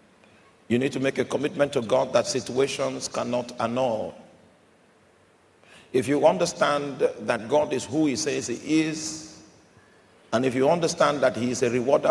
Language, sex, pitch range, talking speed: English, male, 125-150 Hz, 160 wpm